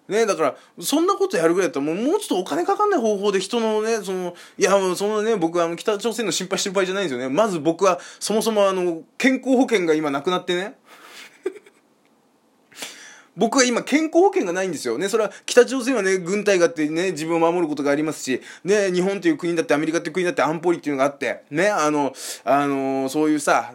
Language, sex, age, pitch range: Japanese, male, 20-39, 150-220 Hz